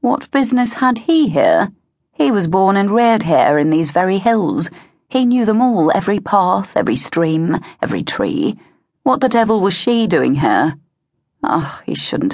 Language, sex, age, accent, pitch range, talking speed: English, female, 30-49, British, 155-220 Hz, 170 wpm